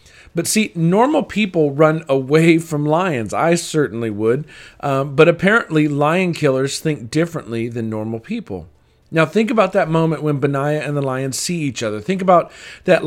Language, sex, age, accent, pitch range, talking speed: English, male, 40-59, American, 135-170 Hz, 170 wpm